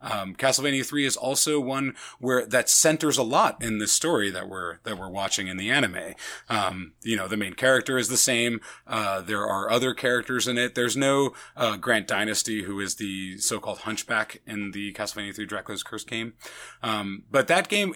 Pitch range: 100-130 Hz